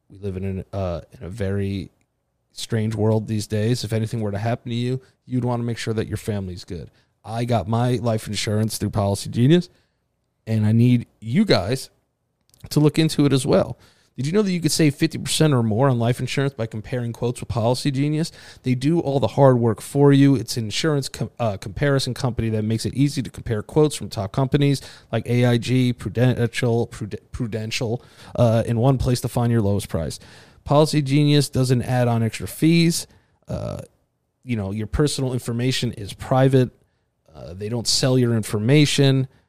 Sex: male